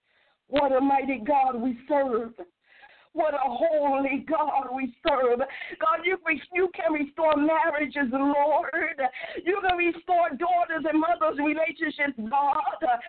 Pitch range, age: 295-365 Hz, 50-69